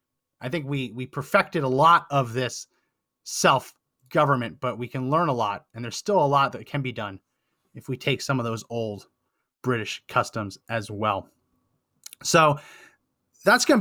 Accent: American